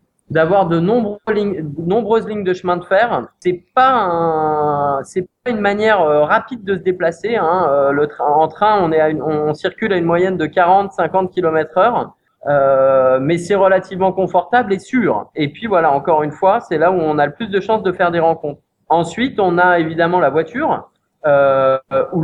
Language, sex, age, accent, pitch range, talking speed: French, male, 20-39, French, 155-200 Hz, 190 wpm